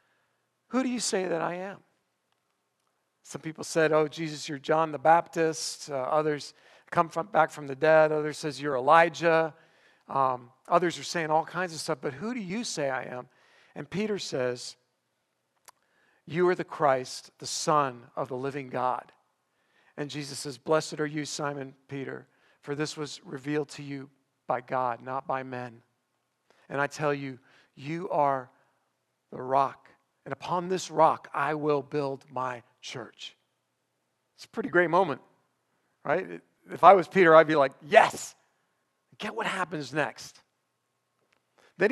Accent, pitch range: American, 135-175 Hz